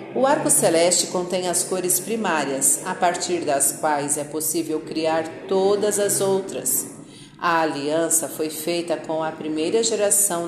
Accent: Brazilian